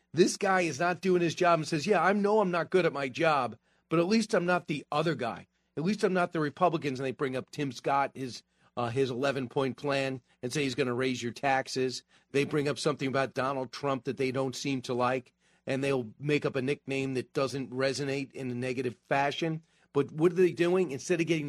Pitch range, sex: 130-165 Hz, male